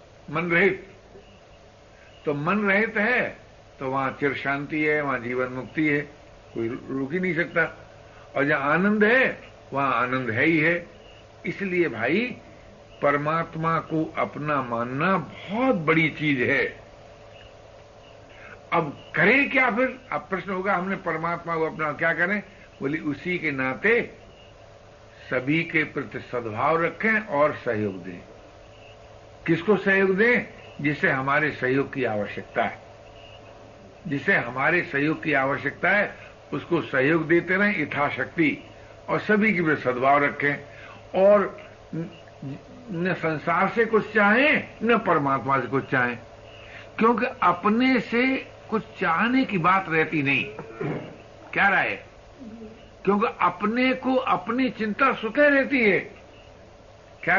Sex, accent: male, native